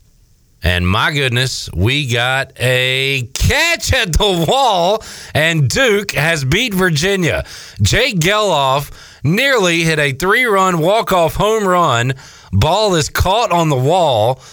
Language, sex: English, male